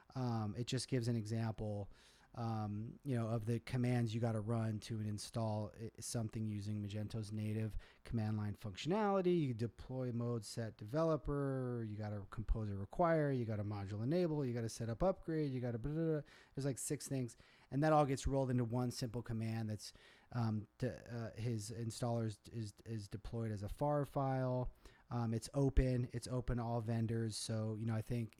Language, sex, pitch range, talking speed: English, male, 105-125 Hz, 185 wpm